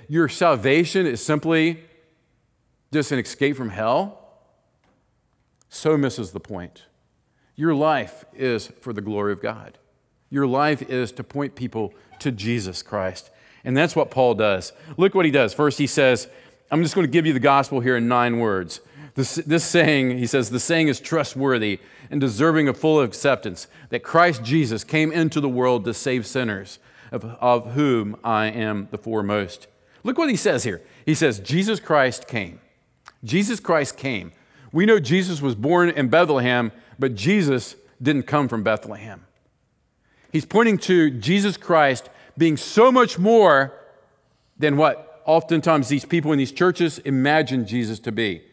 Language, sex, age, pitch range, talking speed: English, male, 40-59, 120-160 Hz, 165 wpm